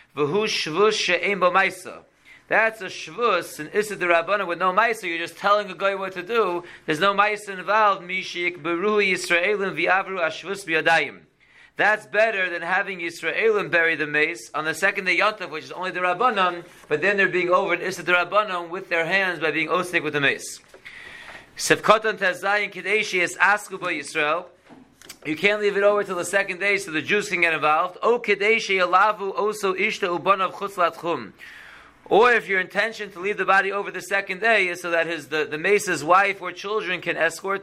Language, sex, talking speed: English, male, 165 wpm